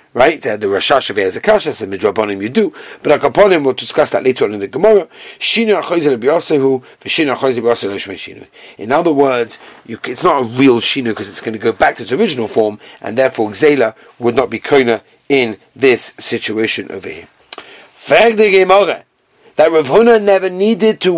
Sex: male